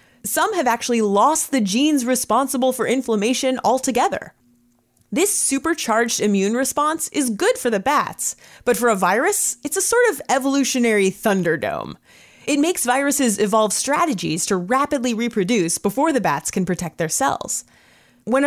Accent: American